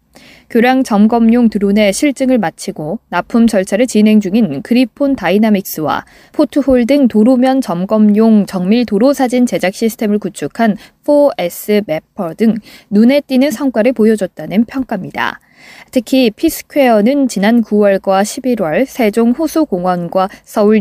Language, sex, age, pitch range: Korean, female, 20-39, 200-255 Hz